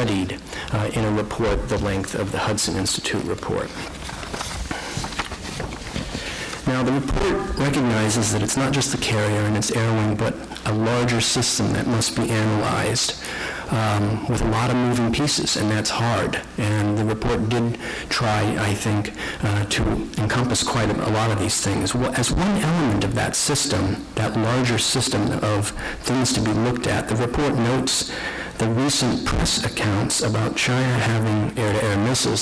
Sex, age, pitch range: male, 50-69, 105-120 Hz